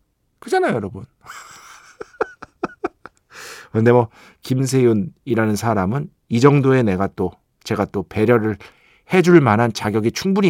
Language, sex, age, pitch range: Korean, male, 40-59, 110-165 Hz